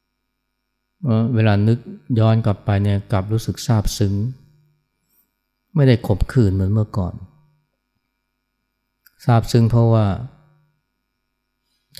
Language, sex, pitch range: Thai, male, 100-125 Hz